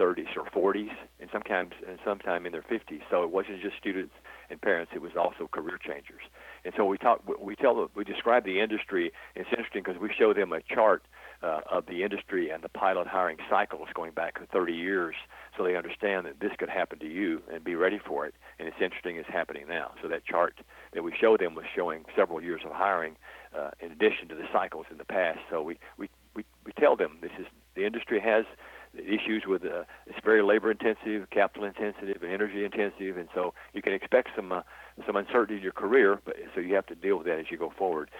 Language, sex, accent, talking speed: English, male, American, 225 wpm